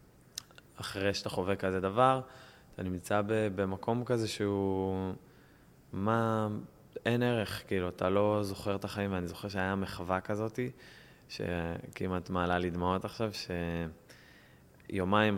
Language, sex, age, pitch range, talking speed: Hebrew, male, 20-39, 90-110 Hz, 115 wpm